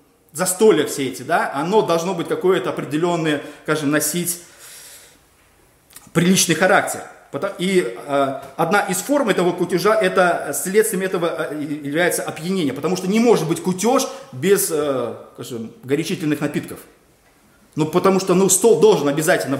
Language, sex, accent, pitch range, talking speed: Russian, male, native, 145-185 Hz, 135 wpm